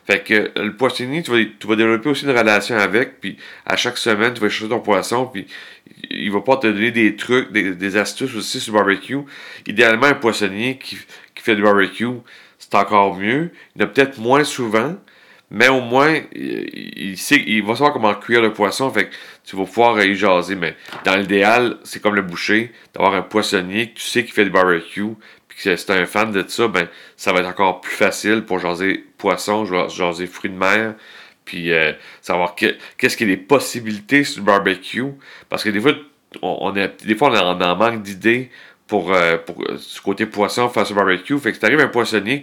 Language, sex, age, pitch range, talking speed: French, male, 40-59, 100-125 Hz, 215 wpm